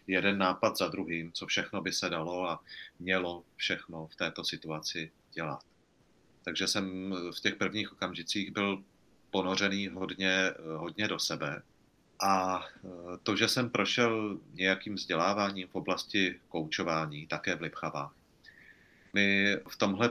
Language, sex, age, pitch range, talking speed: Czech, male, 30-49, 90-100 Hz, 130 wpm